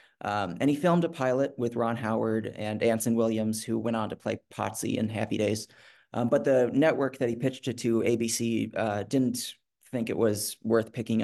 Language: English